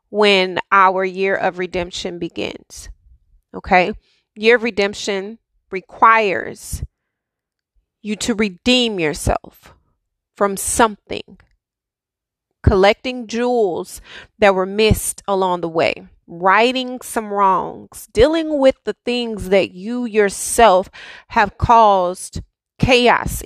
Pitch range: 190-235 Hz